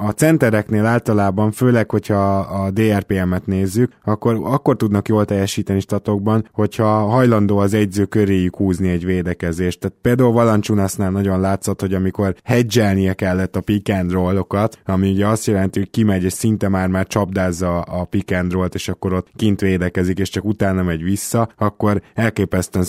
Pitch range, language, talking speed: 90-105 Hz, Hungarian, 150 wpm